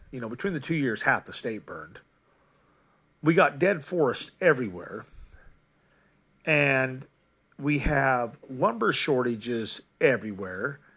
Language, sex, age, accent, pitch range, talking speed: English, male, 40-59, American, 120-155 Hz, 115 wpm